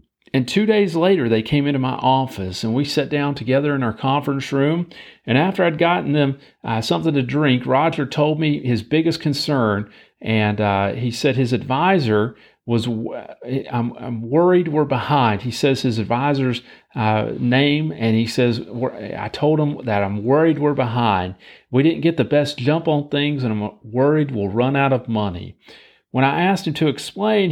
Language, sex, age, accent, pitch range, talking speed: English, male, 40-59, American, 120-160 Hz, 185 wpm